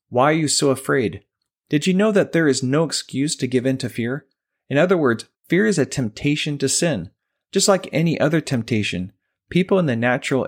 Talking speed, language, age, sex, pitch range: 205 wpm, English, 30-49, male, 115-150 Hz